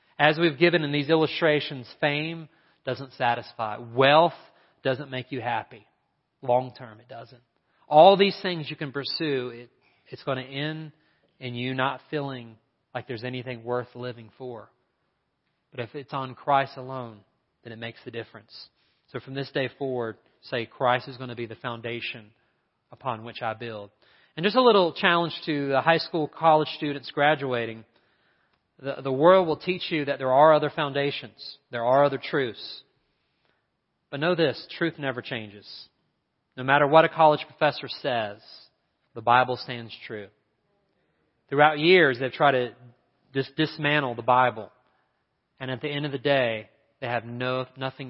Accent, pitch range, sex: American, 120-155 Hz, male